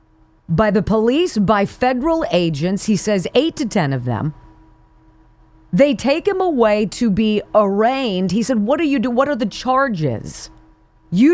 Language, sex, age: English, female, 40-59